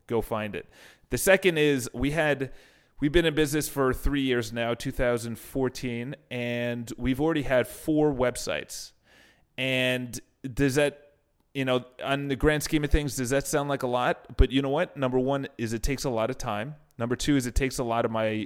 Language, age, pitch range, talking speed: English, 30-49, 115-135 Hz, 200 wpm